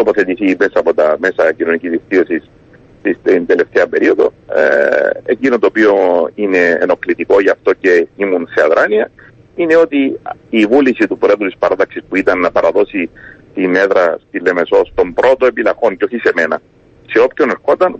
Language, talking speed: Greek, 160 wpm